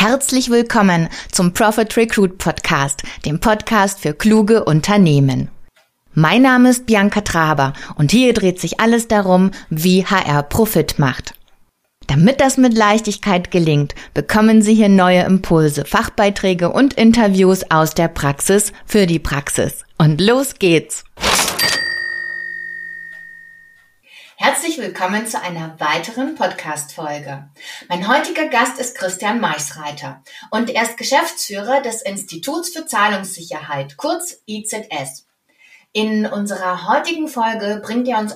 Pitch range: 175-255 Hz